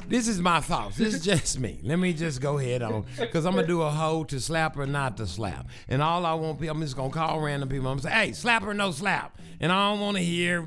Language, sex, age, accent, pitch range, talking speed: English, male, 60-79, American, 130-175 Hz, 280 wpm